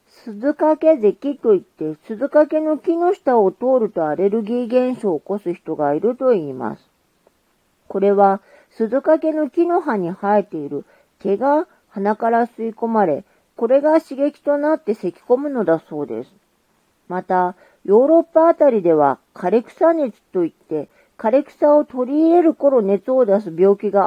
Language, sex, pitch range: Japanese, female, 185-295 Hz